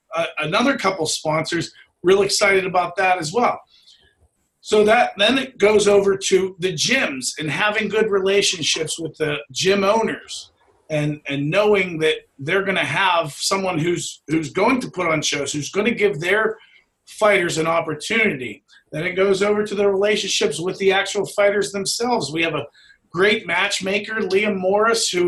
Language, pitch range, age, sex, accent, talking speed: English, 150-200 Hz, 40-59, male, American, 170 wpm